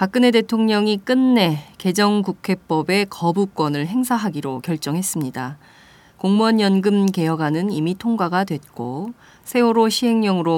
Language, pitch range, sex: Korean, 160-215 Hz, female